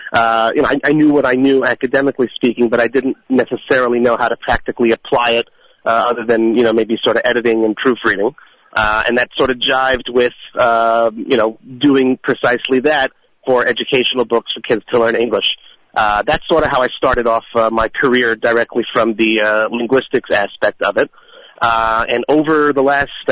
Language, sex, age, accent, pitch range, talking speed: English, male, 30-49, American, 115-130 Hz, 200 wpm